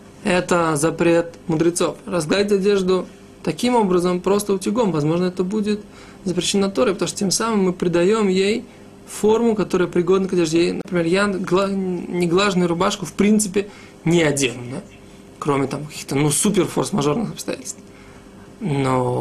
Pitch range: 170-200 Hz